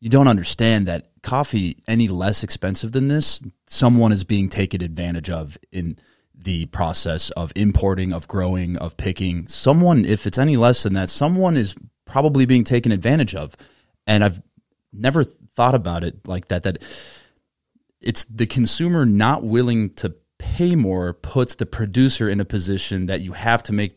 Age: 30-49